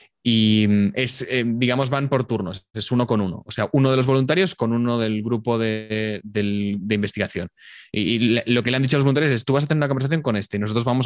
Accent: Spanish